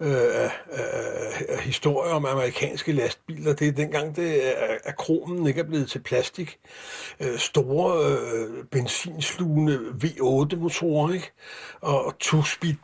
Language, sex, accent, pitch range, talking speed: Danish, male, native, 150-195 Hz, 120 wpm